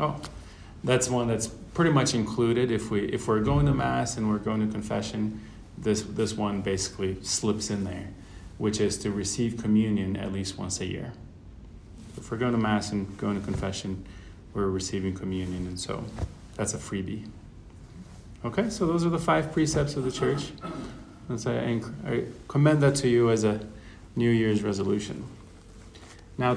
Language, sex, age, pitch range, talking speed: English, male, 30-49, 100-125 Hz, 165 wpm